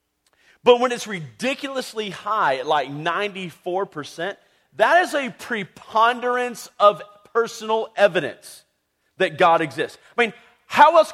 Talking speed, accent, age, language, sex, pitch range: 115 wpm, American, 40-59, English, male, 180-245 Hz